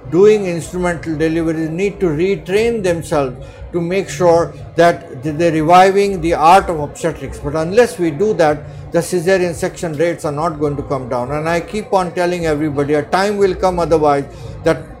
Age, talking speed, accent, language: 50-69, 180 wpm, Indian, English